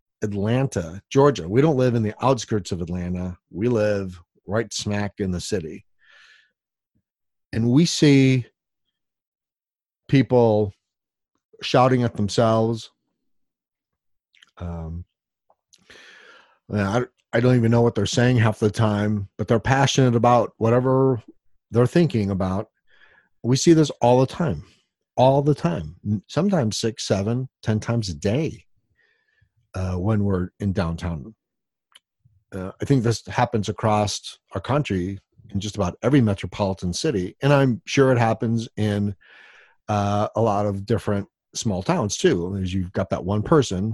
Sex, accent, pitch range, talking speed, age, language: male, American, 100-125 Hz, 135 wpm, 40-59, English